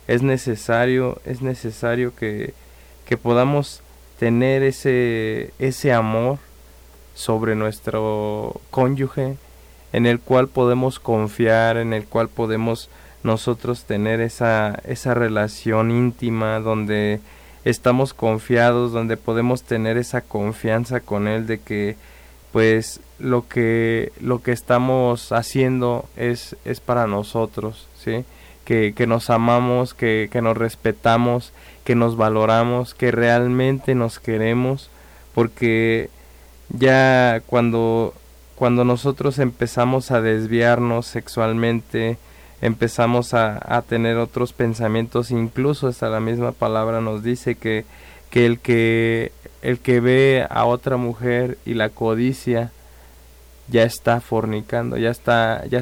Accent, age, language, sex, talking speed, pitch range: Mexican, 20-39, Spanish, male, 115 wpm, 110-125 Hz